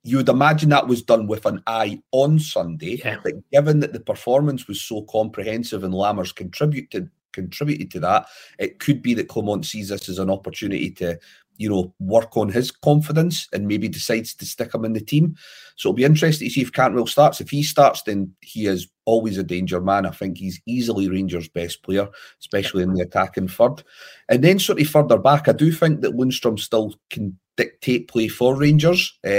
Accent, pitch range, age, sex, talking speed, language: British, 100-140 Hz, 30-49, male, 200 wpm, English